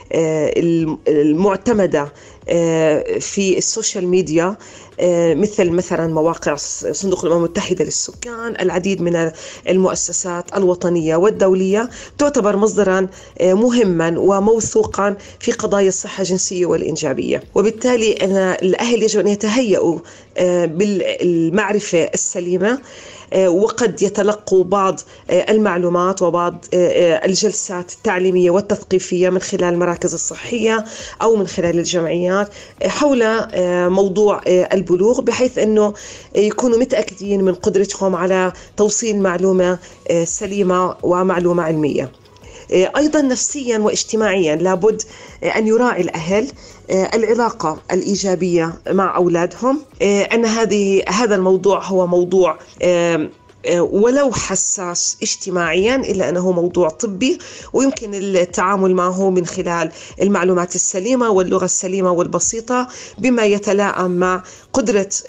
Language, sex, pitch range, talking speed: Arabic, female, 180-210 Hz, 95 wpm